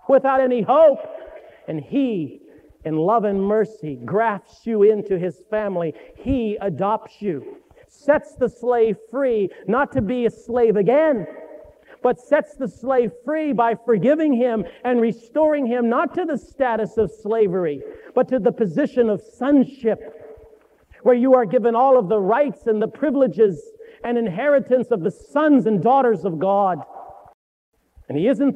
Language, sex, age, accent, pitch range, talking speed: English, male, 50-69, American, 215-270 Hz, 155 wpm